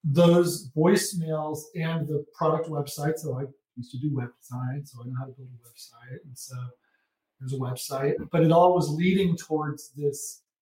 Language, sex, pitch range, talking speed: English, male, 140-170 Hz, 185 wpm